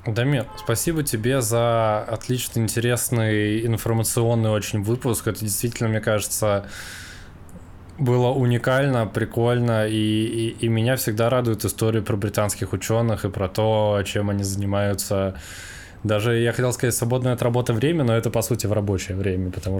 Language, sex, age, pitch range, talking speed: Russian, male, 20-39, 100-115 Hz, 145 wpm